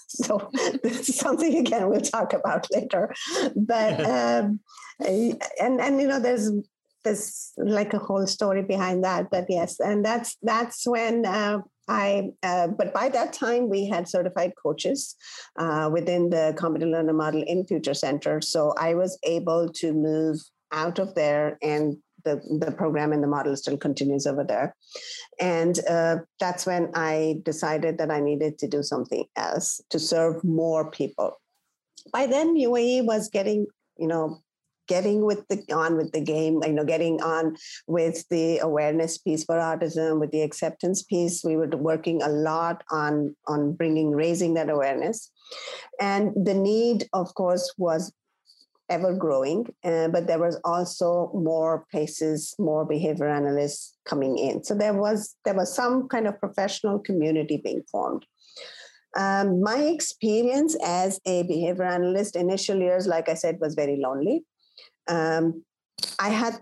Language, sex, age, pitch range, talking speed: English, female, 50-69, 160-210 Hz, 155 wpm